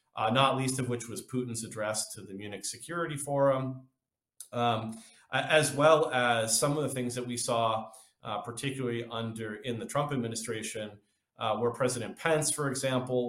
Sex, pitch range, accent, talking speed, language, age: male, 115-145 Hz, American, 165 wpm, English, 40-59